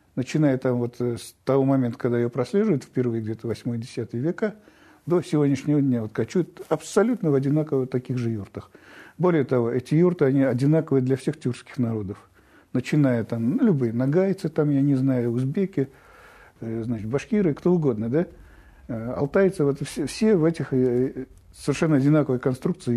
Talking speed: 150 wpm